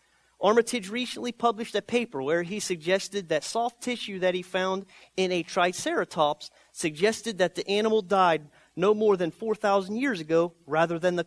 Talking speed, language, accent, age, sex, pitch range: 165 wpm, English, American, 30-49, male, 170-210 Hz